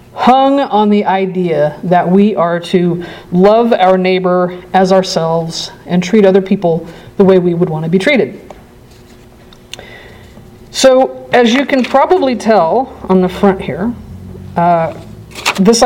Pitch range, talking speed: 180-235 Hz, 140 wpm